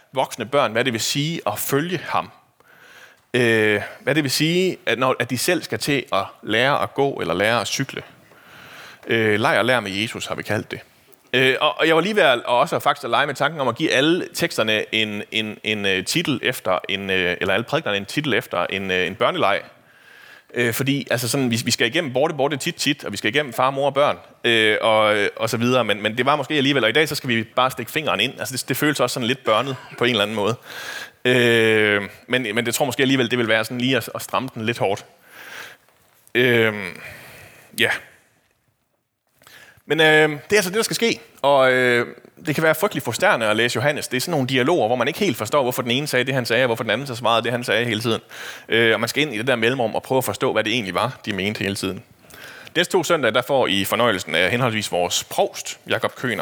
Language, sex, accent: Danish, male, native